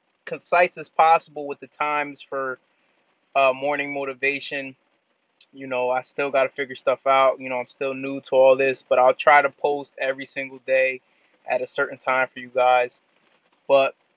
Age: 20-39